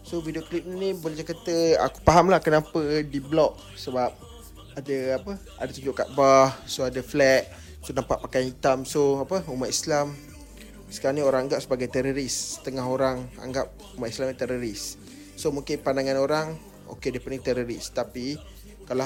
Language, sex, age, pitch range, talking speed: Malay, male, 20-39, 125-145 Hz, 170 wpm